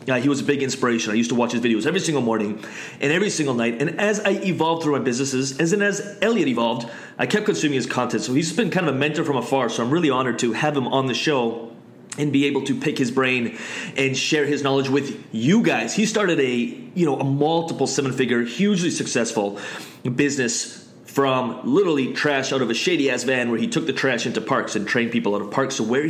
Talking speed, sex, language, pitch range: 240 wpm, male, English, 125-160 Hz